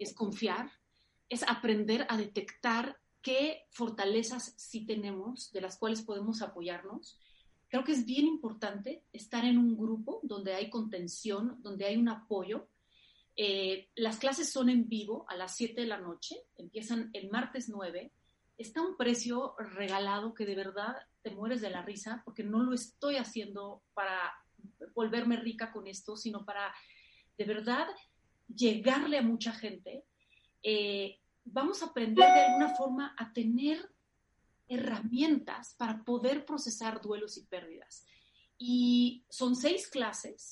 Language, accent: Spanish, Mexican